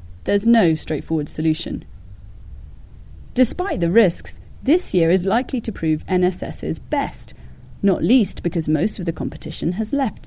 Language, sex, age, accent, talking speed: English, female, 30-49, British, 140 wpm